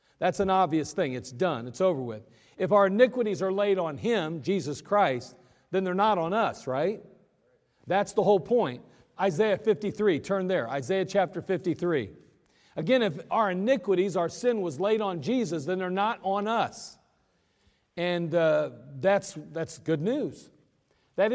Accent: American